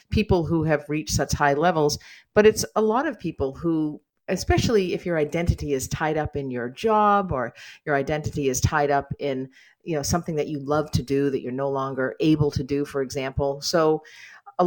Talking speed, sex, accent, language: 205 wpm, female, American, English